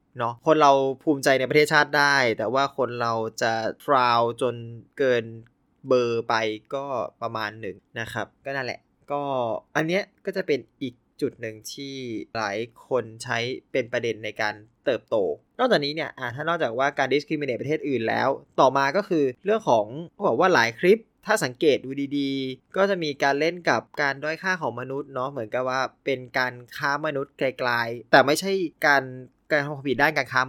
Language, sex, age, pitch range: Thai, male, 20-39, 120-155 Hz